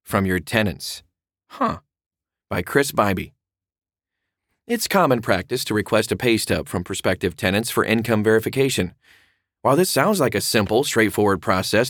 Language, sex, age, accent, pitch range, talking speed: English, male, 30-49, American, 95-125 Hz, 145 wpm